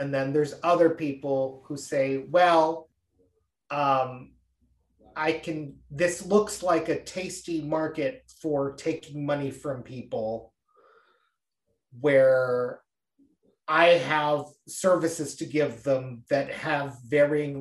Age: 30-49